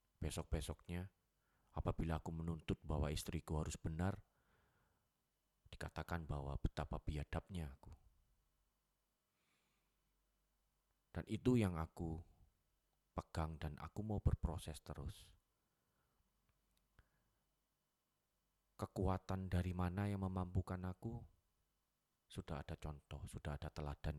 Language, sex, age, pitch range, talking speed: Indonesian, male, 30-49, 75-90 Hz, 85 wpm